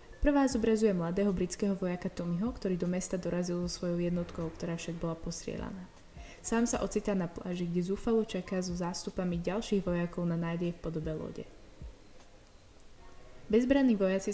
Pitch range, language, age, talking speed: 175-205 Hz, Slovak, 20-39, 150 wpm